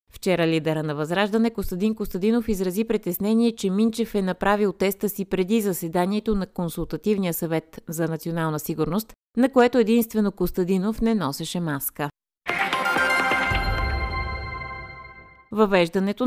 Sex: female